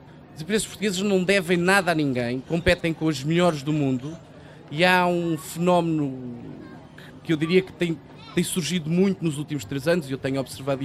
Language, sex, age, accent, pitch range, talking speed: Portuguese, male, 20-39, Portuguese, 150-185 Hz, 195 wpm